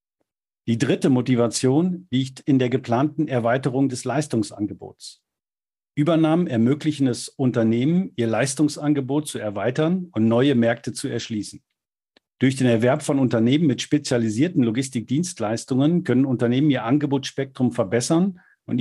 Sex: male